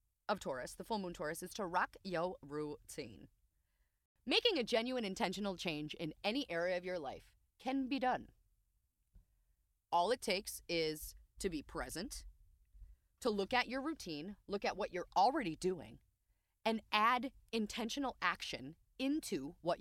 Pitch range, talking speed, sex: 170-255 Hz, 150 wpm, female